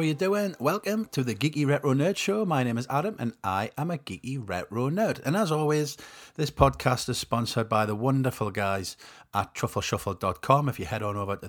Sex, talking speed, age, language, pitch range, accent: male, 215 wpm, 40-59, English, 105-140 Hz, British